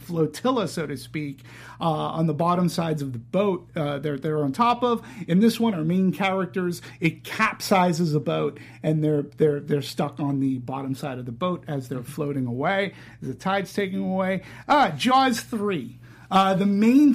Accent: American